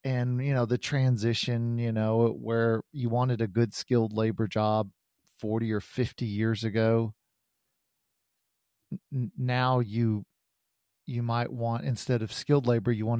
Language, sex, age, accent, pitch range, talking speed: English, male, 40-59, American, 110-135 Hz, 145 wpm